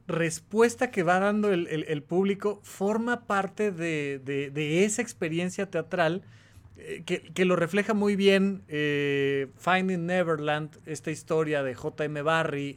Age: 30-49